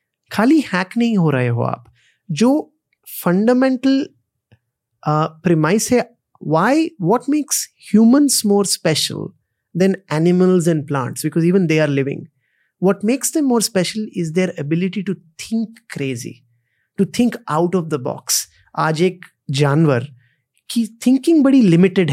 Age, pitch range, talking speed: 30-49, 150-220 Hz, 135 wpm